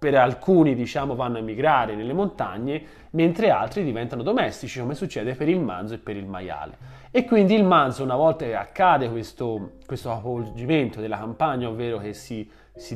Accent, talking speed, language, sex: native, 175 wpm, Italian, male